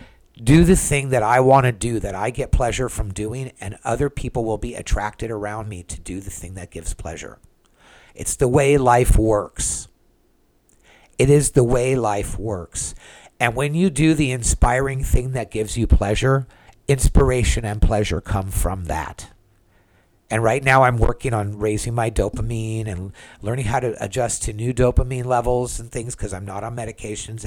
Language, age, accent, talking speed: English, 50-69, American, 180 wpm